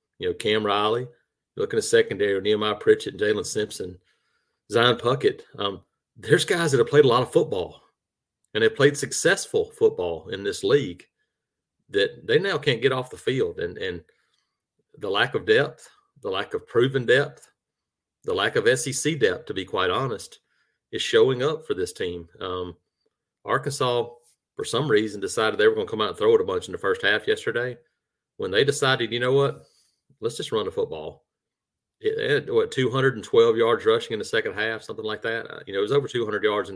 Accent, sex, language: American, male, English